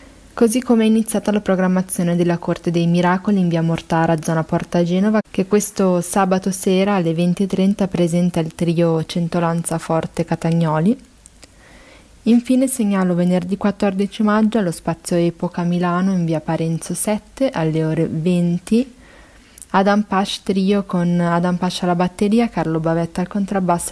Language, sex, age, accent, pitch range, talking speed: Italian, female, 30-49, native, 165-200 Hz, 135 wpm